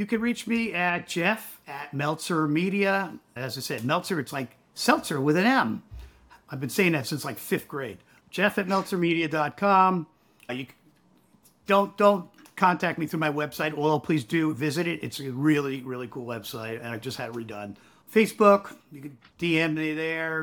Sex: male